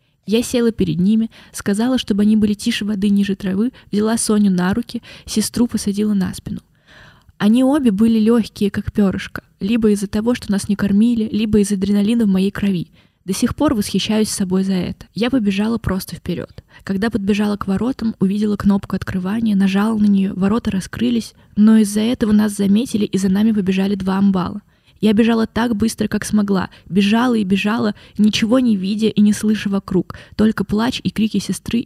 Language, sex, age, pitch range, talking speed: Russian, female, 20-39, 195-225 Hz, 175 wpm